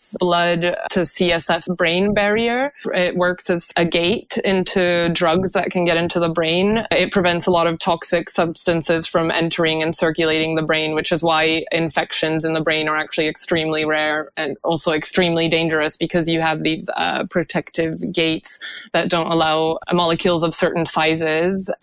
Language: English